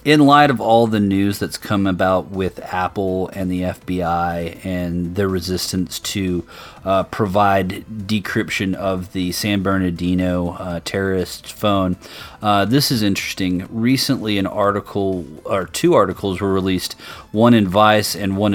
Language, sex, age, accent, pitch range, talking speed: English, male, 30-49, American, 90-110 Hz, 140 wpm